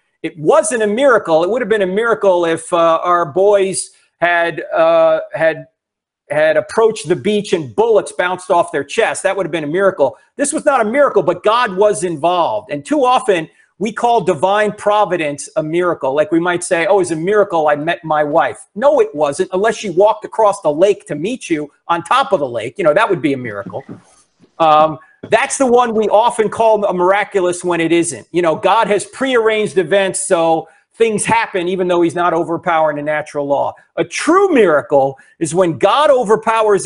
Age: 40-59